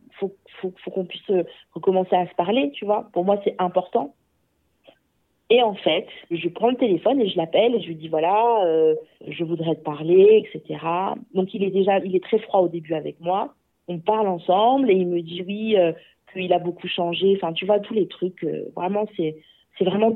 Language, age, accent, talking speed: French, 40-59, French, 215 wpm